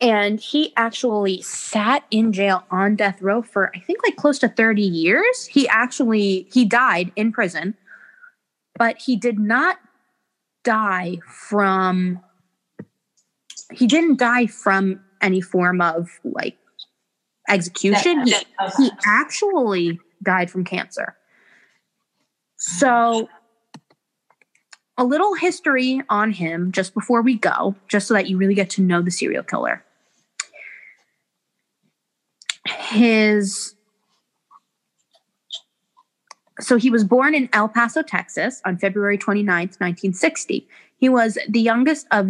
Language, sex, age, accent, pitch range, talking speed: English, female, 20-39, American, 195-250 Hz, 120 wpm